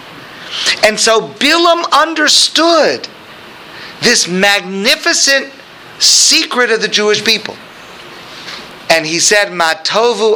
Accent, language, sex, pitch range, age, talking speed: American, English, male, 155-240 Hz, 50-69, 85 wpm